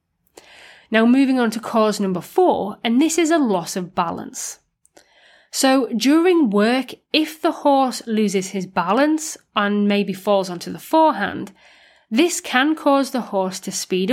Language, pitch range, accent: English, 200-275 Hz, British